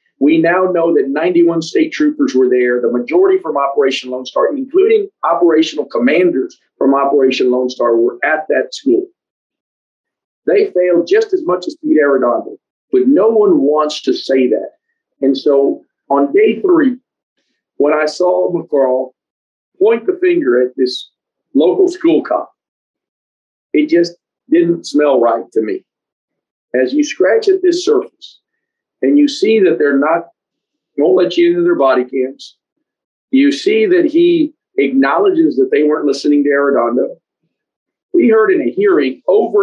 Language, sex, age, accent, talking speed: English, male, 50-69, American, 155 wpm